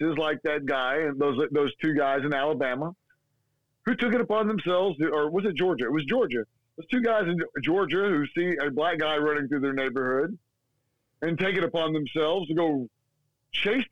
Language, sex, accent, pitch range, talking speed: English, male, American, 135-175 Hz, 195 wpm